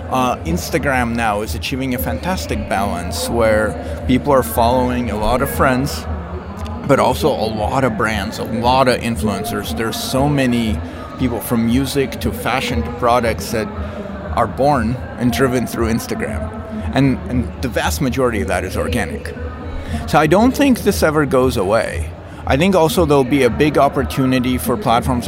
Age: 30-49